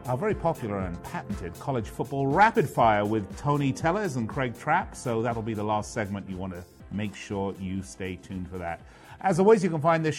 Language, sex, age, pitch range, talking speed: English, male, 40-59, 115-160 Hz, 220 wpm